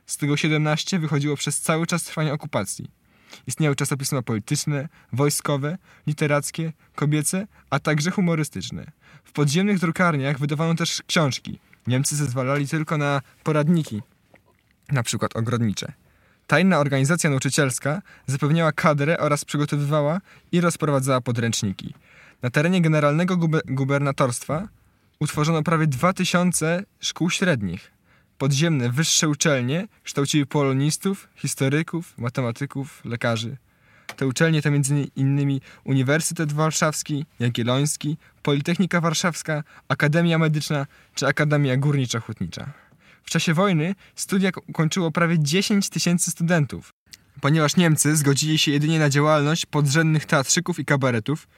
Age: 20-39